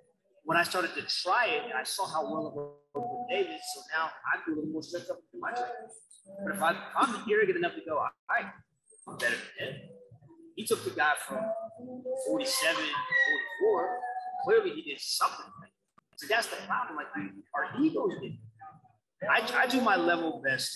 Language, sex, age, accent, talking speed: English, male, 30-49, American, 200 wpm